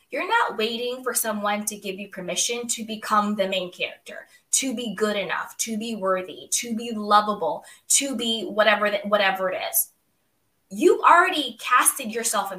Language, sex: English, female